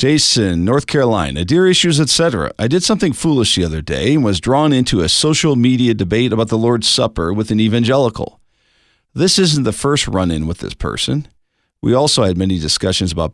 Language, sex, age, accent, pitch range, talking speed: English, male, 40-59, American, 105-140 Hz, 190 wpm